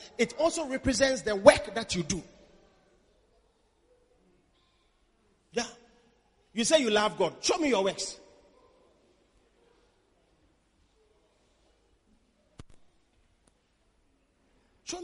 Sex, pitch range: male, 250-345 Hz